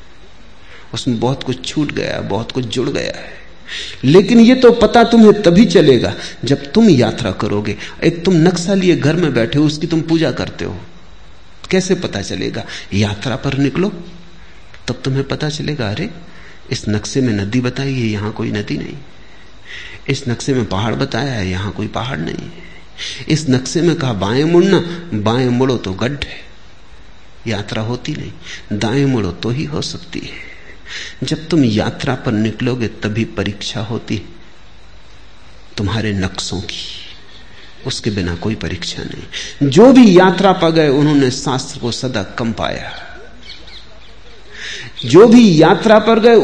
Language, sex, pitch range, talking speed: Hindi, male, 100-150 Hz, 150 wpm